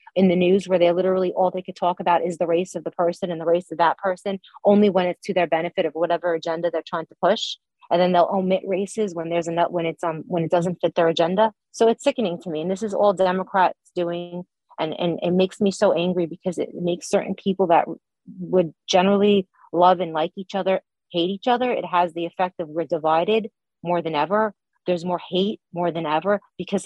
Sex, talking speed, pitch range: female, 235 wpm, 170-195 Hz